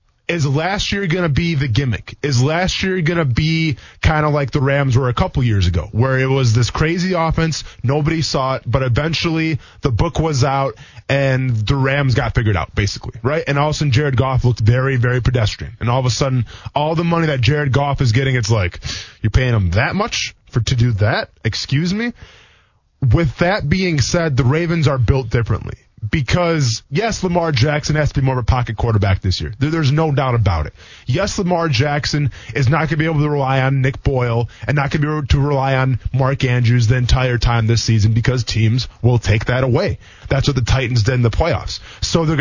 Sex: male